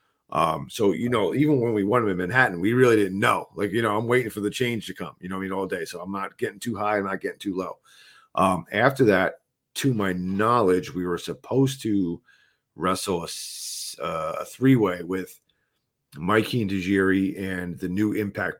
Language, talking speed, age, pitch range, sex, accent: English, 210 wpm, 40-59, 95-110 Hz, male, American